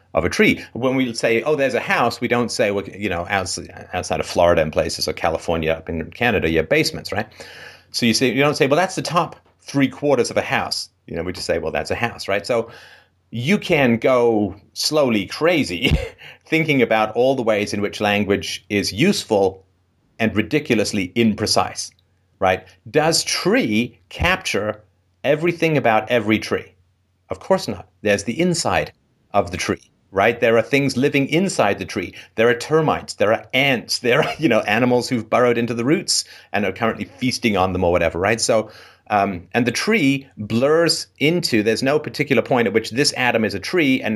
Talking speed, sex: 195 wpm, male